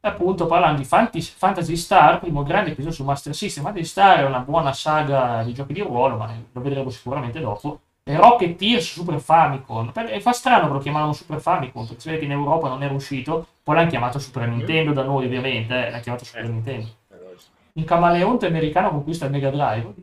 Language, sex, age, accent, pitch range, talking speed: Italian, male, 30-49, native, 125-175 Hz, 200 wpm